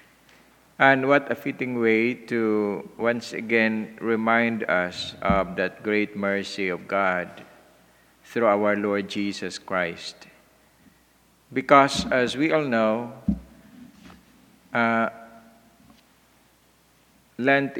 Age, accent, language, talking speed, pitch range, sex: 50-69, Filipino, English, 95 wpm, 100-120 Hz, male